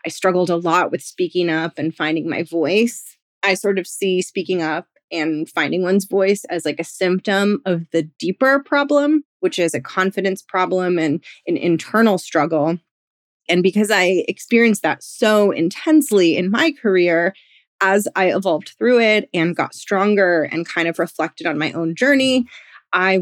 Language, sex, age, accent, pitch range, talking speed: English, female, 20-39, American, 175-220 Hz, 170 wpm